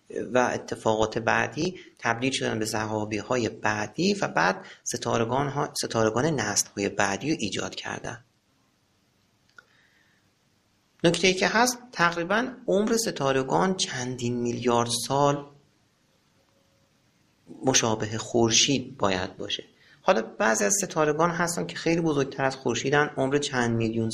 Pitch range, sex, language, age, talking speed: 110-155 Hz, male, Persian, 40-59, 110 wpm